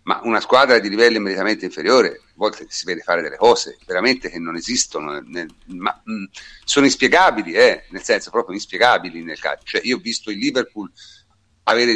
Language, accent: Italian, native